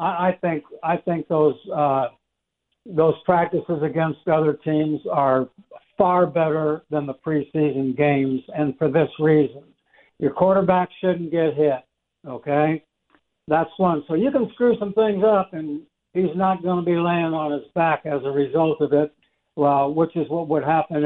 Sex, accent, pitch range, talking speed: male, American, 155-195 Hz, 165 wpm